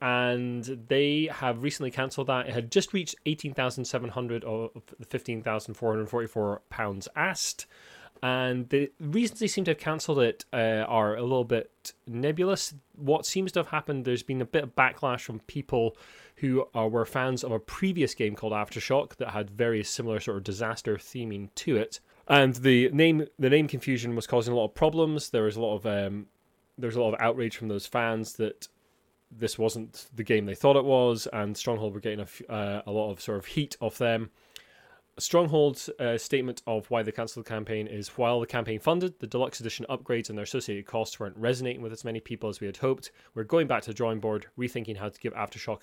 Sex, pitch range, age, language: male, 110-130 Hz, 20-39, English